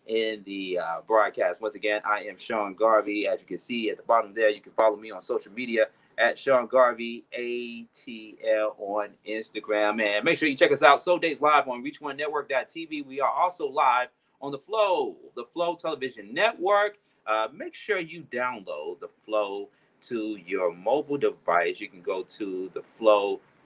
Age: 30-49